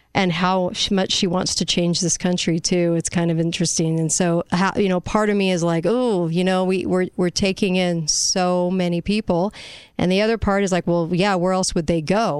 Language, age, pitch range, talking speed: English, 40-59, 175-205 Hz, 230 wpm